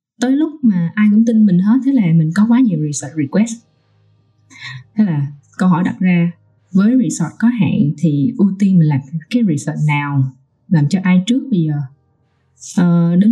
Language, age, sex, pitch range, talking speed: Vietnamese, 20-39, female, 170-225 Hz, 185 wpm